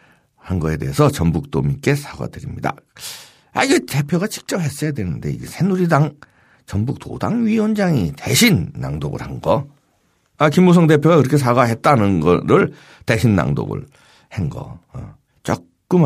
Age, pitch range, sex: 50-69, 115-165 Hz, male